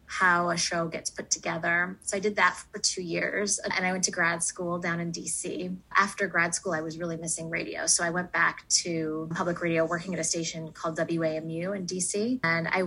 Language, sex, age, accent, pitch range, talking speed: English, female, 20-39, American, 165-190 Hz, 220 wpm